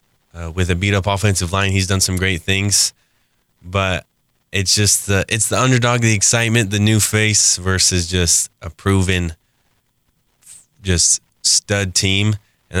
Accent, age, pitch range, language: American, 20-39, 85-95 Hz, English